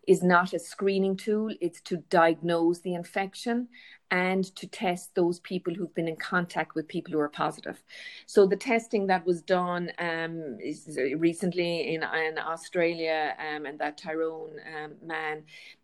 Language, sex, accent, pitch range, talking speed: English, female, Irish, 160-190 Hz, 155 wpm